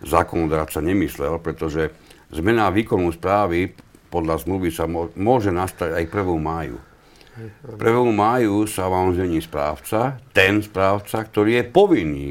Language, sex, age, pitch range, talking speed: Slovak, male, 60-79, 80-110 Hz, 125 wpm